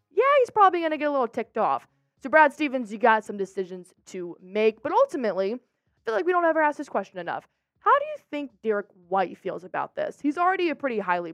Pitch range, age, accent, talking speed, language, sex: 210-325 Hz, 20-39, American, 240 wpm, English, female